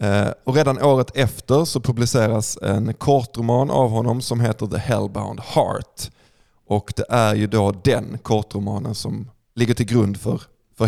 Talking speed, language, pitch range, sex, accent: 150 wpm, Swedish, 110-130 Hz, male, native